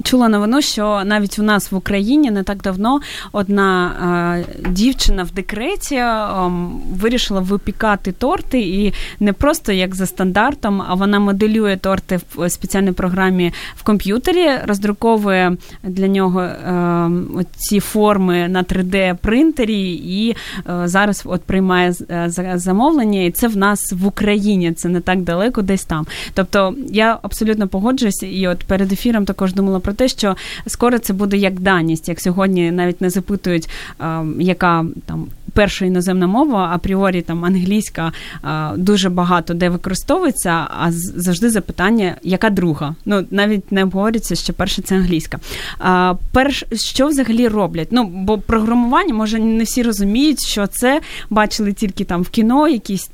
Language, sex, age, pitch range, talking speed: Ukrainian, female, 20-39, 180-215 Hz, 145 wpm